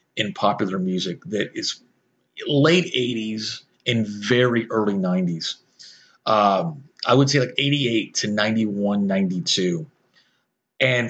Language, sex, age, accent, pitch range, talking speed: English, male, 30-49, American, 105-145 Hz, 115 wpm